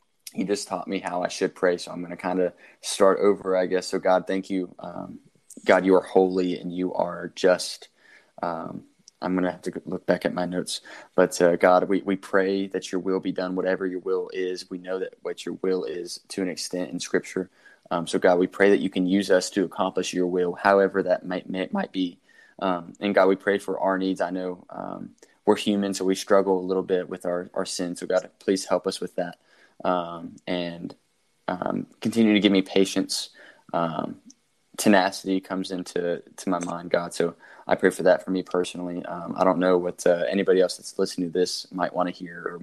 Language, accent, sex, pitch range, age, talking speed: English, American, male, 90-95 Hz, 20-39, 225 wpm